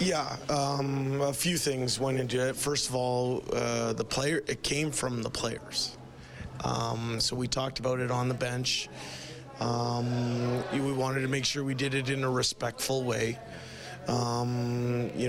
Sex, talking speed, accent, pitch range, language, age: male, 165 wpm, American, 120-135 Hz, English, 30-49